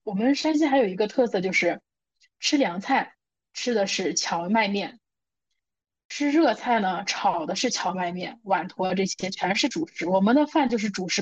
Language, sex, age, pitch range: Chinese, female, 20-39, 185-225 Hz